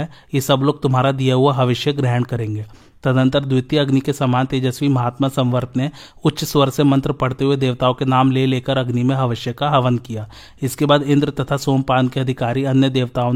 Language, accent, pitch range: Hindi, native, 125-140 Hz